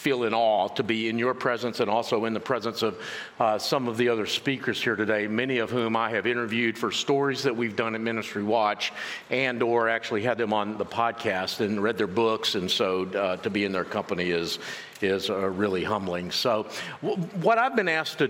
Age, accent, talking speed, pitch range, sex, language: 50-69, American, 225 wpm, 115-140 Hz, male, English